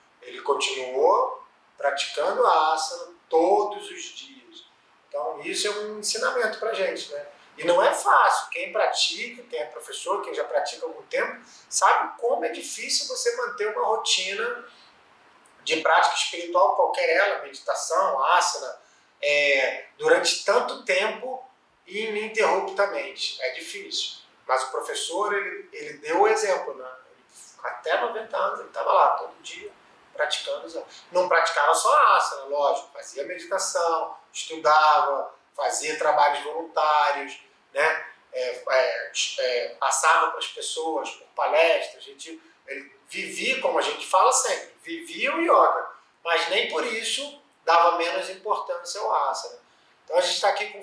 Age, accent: 30-49, Brazilian